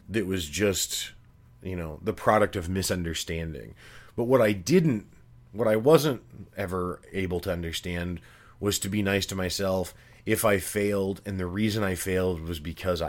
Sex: male